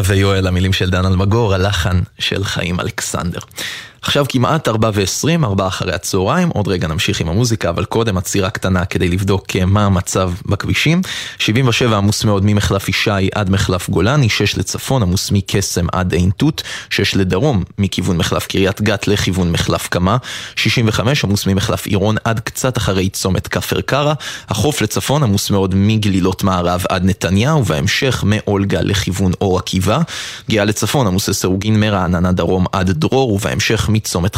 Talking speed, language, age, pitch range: 145 wpm, Hebrew, 20-39, 95-115 Hz